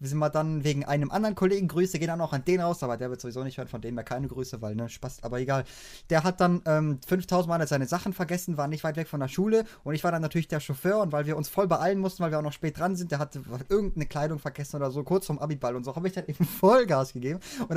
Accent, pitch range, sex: German, 145-180 Hz, male